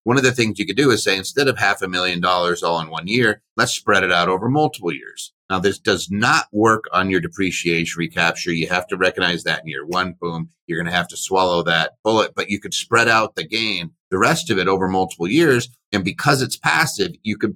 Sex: male